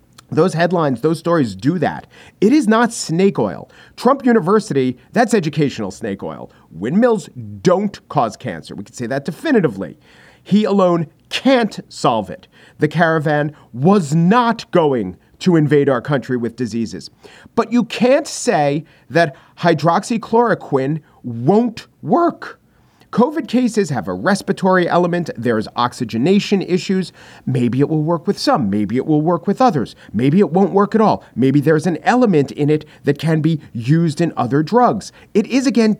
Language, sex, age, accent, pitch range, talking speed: English, male, 40-59, American, 140-205 Hz, 155 wpm